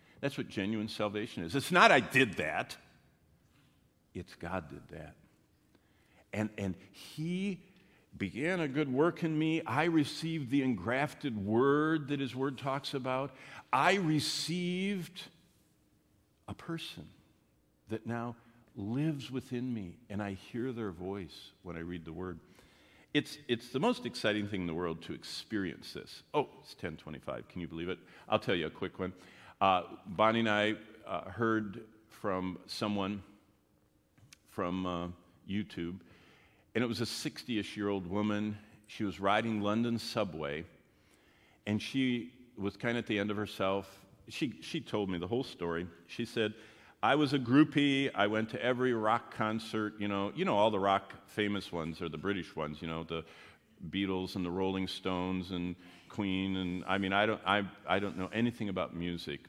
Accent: American